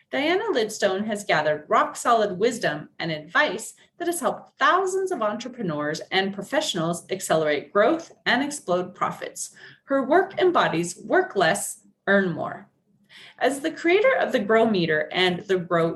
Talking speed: 145 wpm